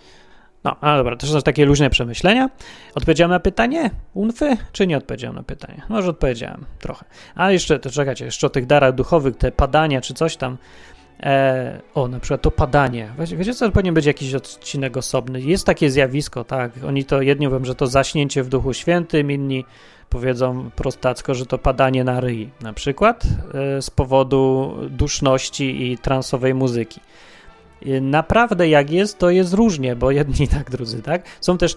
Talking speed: 170 wpm